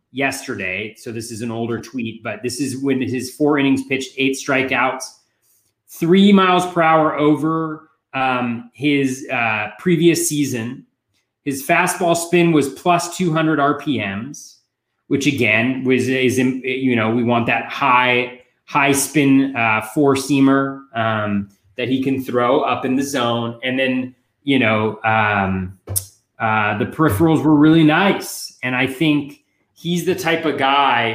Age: 30-49